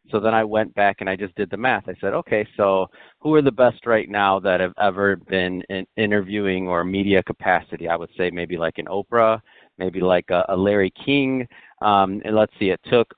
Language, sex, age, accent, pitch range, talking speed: English, male, 40-59, American, 95-105 Hz, 225 wpm